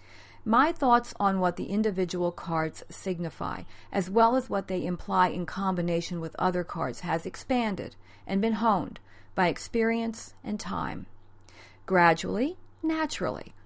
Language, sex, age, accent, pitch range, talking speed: English, female, 50-69, American, 160-225 Hz, 130 wpm